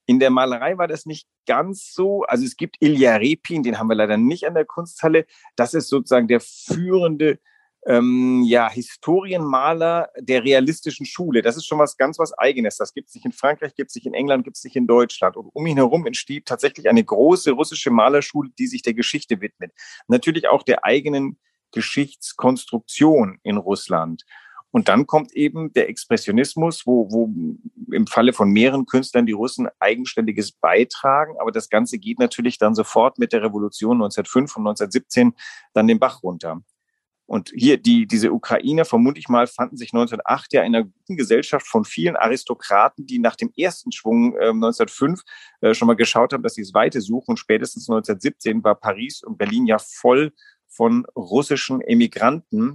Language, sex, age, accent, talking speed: German, male, 40-59, German, 175 wpm